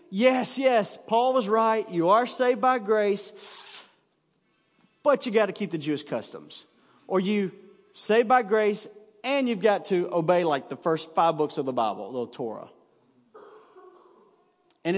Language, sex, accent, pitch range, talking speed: English, male, American, 175-250 Hz, 155 wpm